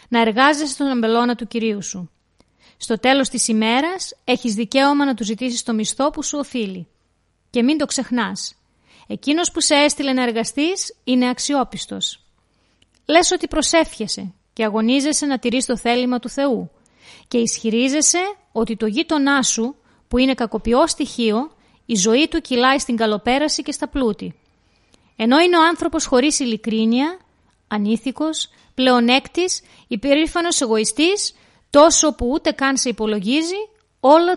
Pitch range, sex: 225-290 Hz, female